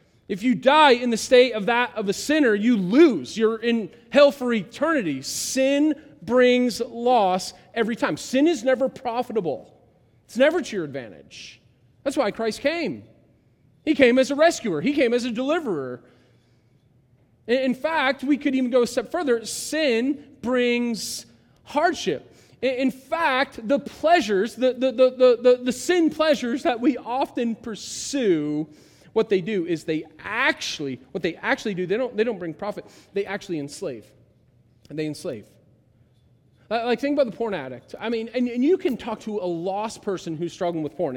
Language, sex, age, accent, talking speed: English, male, 30-49, American, 170 wpm